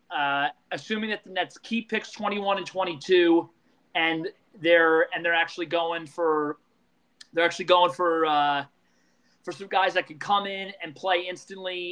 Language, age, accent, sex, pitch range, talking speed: English, 30-49, American, male, 165-200 Hz, 160 wpm